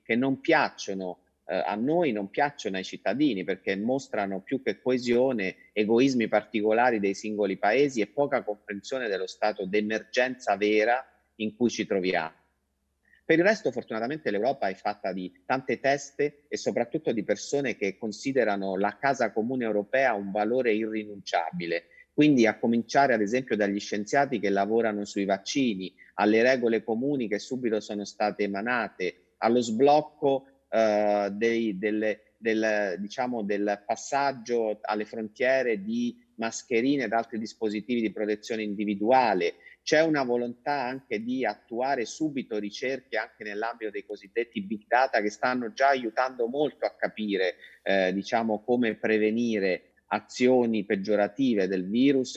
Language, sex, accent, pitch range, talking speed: Italian, male, native, 105-130 Hz, 140 wpm